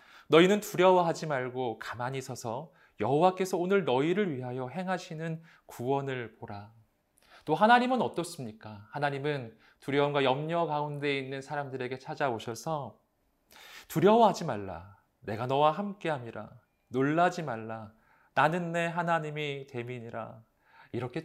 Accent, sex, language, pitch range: native, male, Korean, 115-155 Hz